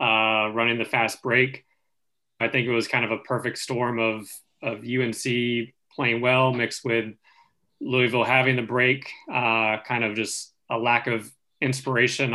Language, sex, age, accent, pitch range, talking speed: English, male, 20-39, American, 115-130 Hz, 160 wpm